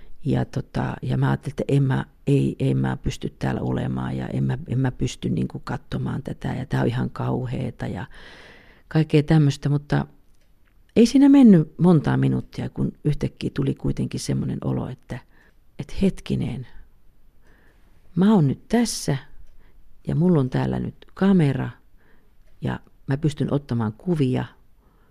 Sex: female